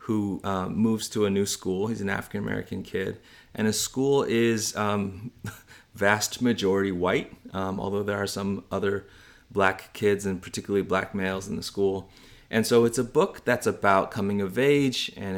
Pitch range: 90-110 Hz